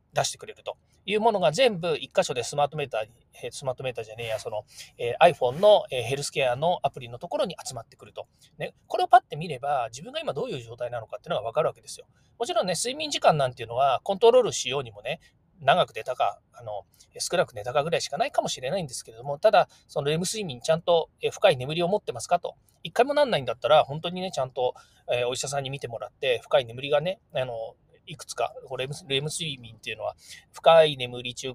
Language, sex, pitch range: Japanese, male, 125-215 Hz